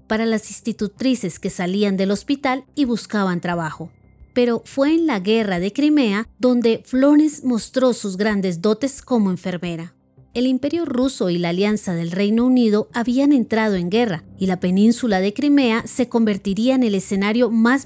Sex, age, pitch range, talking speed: female, 30-49, 190-250 Hz, 165 wpm